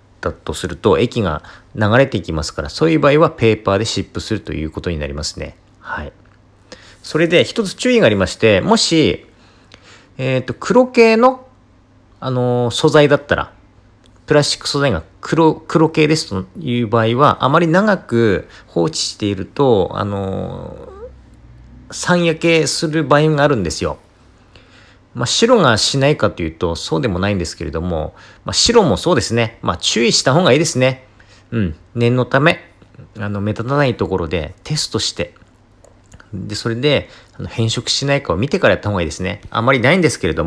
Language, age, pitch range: Japanese, 40-59, 95-130 Hz